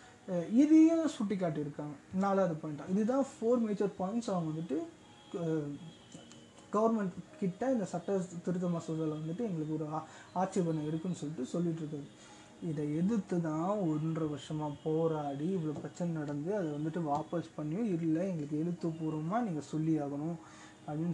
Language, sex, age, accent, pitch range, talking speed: Tamil, male, 20-39, native, 155-200 Hz, 120 wpm